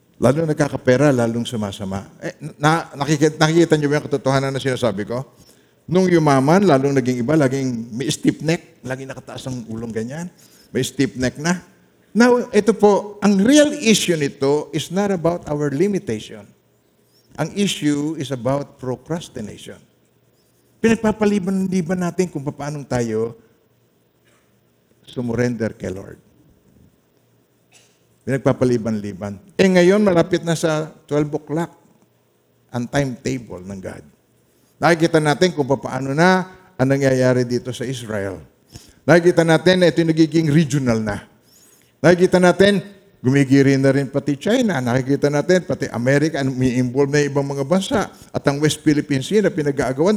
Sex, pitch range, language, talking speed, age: male, 120-165 Hz, Filipino, 135 wpm, 50-69